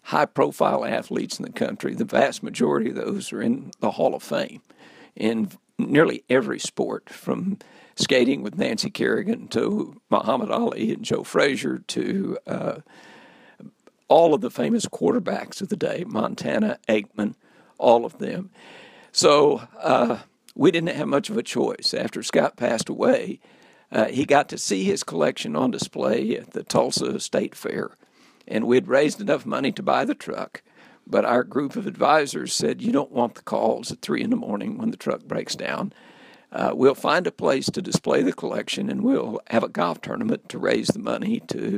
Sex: male